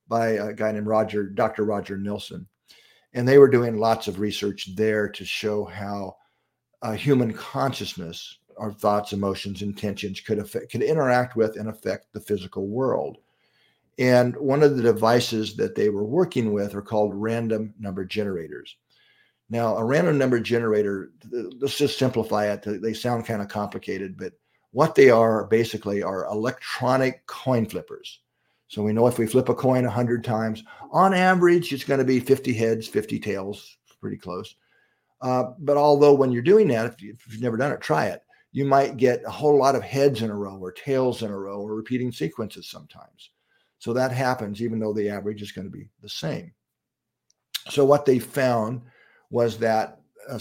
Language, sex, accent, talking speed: English, male, American, 175 wpm